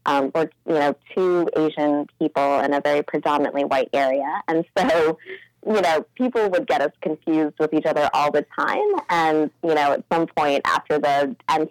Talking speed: 190 wpm